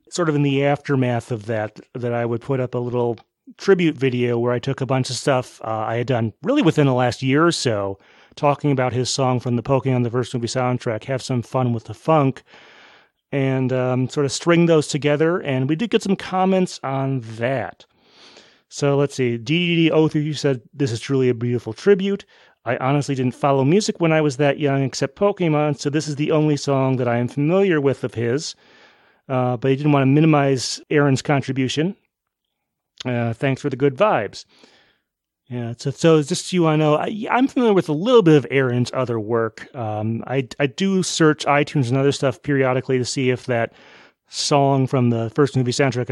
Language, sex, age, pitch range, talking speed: English, male, 30-49, 125-150 Hz, 205 wpm